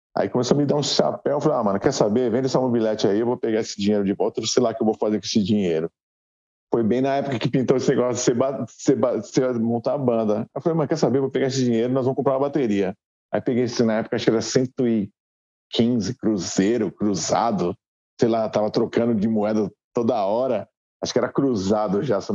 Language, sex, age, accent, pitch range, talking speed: Portuguese, male, 50-69, Brazilian, 105-135 Hz, 240 wpm